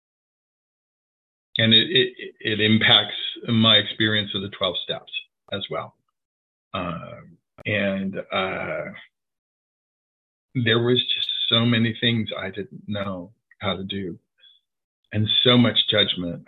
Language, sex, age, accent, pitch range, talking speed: English, male, 40-59, American, 100-130 Hz, 115 wpm